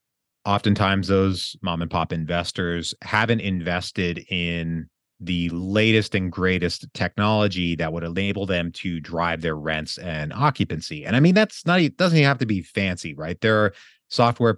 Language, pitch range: English, 85-115 Hz